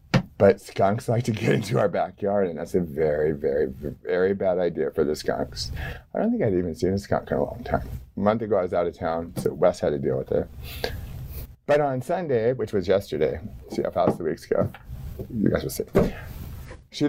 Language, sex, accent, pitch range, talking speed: English, male, American, 95-140 Hz, 220 wpm